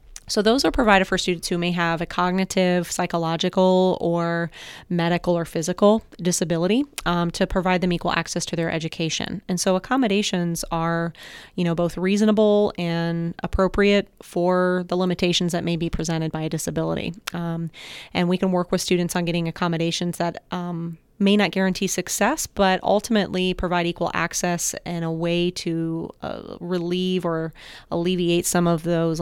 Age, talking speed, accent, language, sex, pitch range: 30-49, 160 wpm, American, English, female, 170-190 Hz